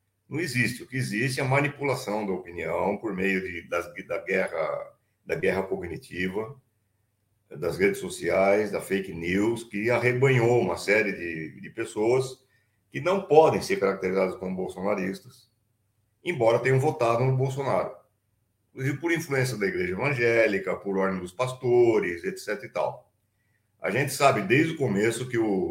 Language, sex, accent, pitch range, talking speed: Portuguese, male, Brazilian, 105-135 Hz, 155 wpm